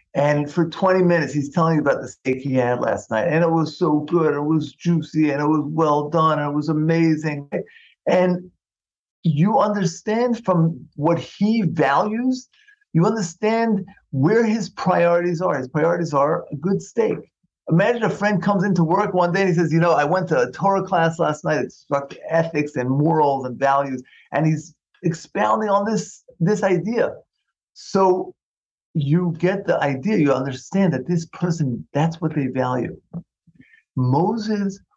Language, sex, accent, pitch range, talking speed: English, male, American, 140-185 Hz, 170 wpm